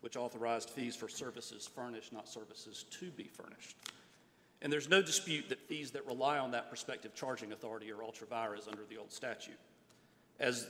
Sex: male